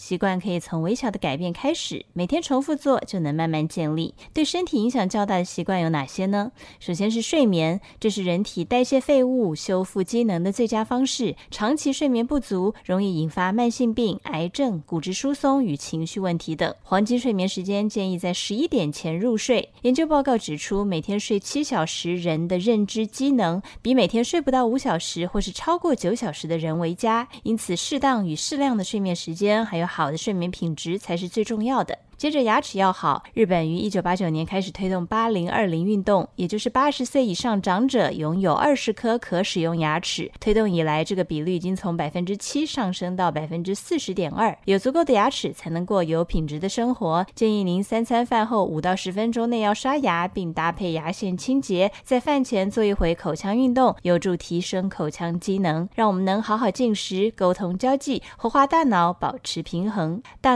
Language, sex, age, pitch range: Chinese, female, 20-39, 175-240 Hz